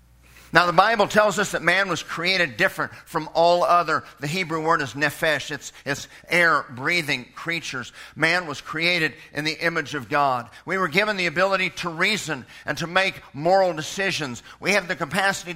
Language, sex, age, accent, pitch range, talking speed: English, male, 50-69, American, 150-190 Hz, 175 wpm